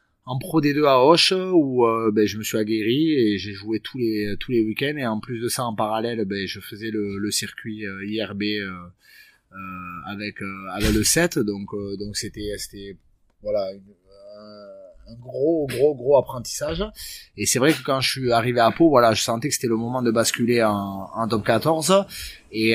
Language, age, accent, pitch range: French, 30-49, French, 105-135 Hz